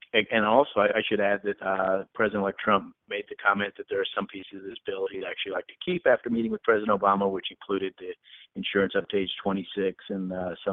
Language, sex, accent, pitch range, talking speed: English, male, American, 95-115 Hz, 230 wpm